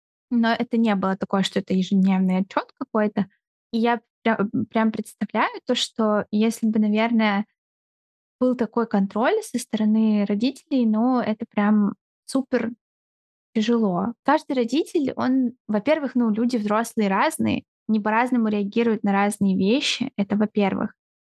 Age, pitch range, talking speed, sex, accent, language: 10-29, 200-240 Hz, 130 wpm, female, native, Russian